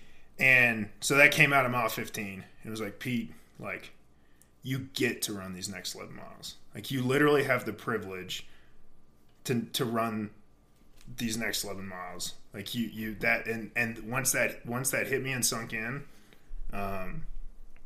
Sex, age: male, 20-39